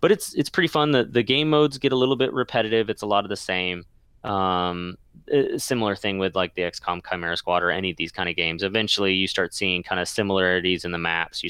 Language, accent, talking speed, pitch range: English, American, 245 wpm, 90-115 Hz